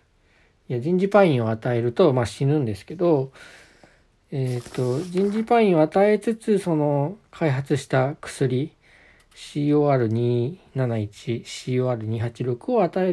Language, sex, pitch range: Japanese, male, 115-155 Hz